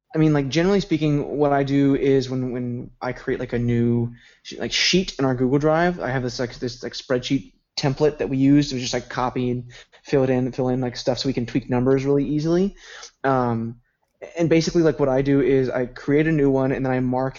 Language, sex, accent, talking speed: English, male, American, 240 wpm